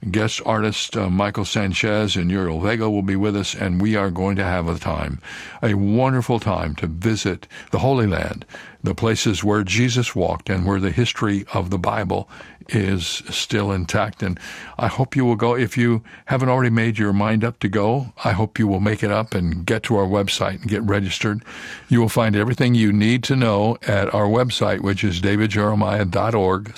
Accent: American